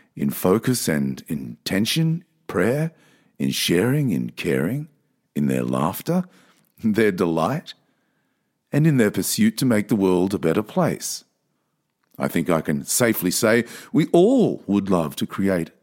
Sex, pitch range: male, 95-135 Hz